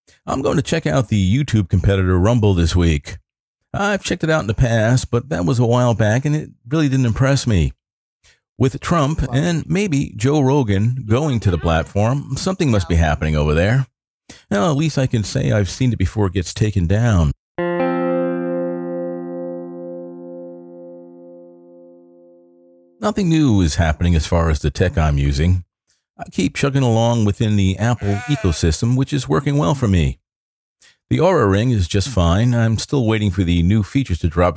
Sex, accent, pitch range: male, American, 85-130 Hz